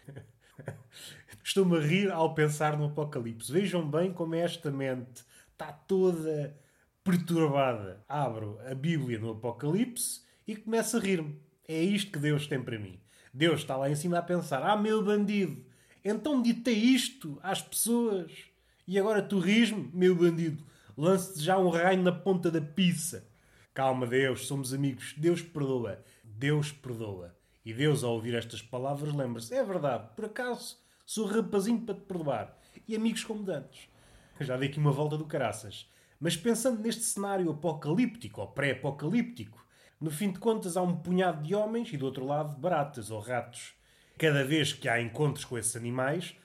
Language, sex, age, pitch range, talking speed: Portuguese, male, 20-39, 130-185 Hz, 165 wpm